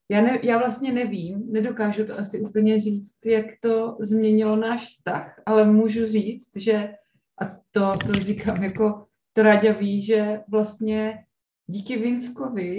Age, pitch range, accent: 20-39, 195-215 Hz, native